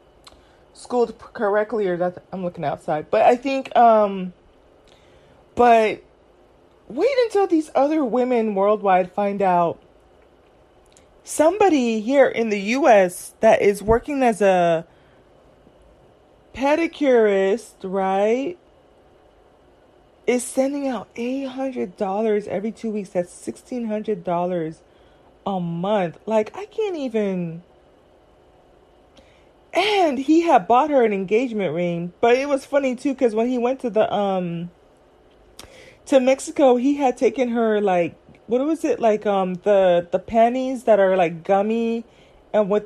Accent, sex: American, female